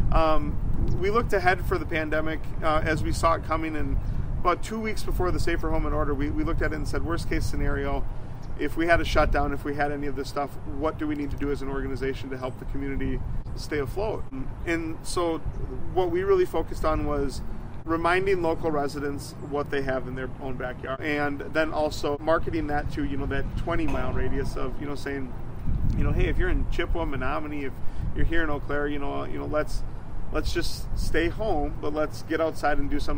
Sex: male